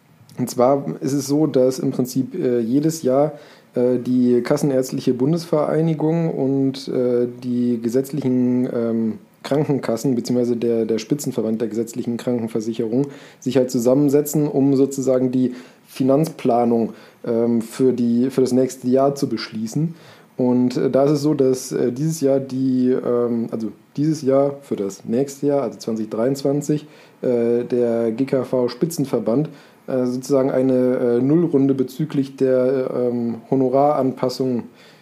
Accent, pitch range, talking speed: German, 120-140 Hz, 110 wpm